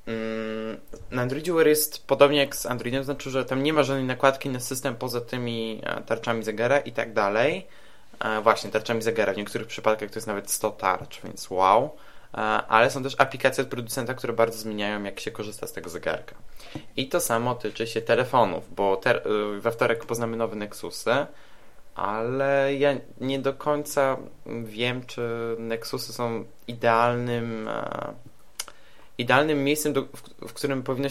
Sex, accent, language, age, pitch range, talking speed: male, native, Polish, 20-39, 110-130 Hz, 150 wpm